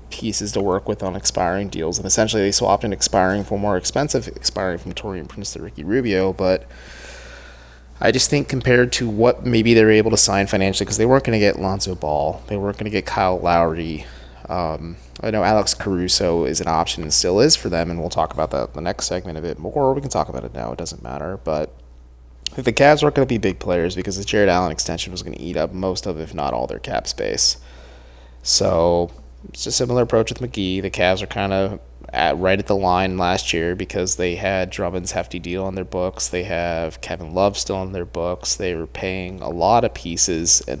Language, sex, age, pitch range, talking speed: English, male, 20-39, 85-105 Hz, 230 wpm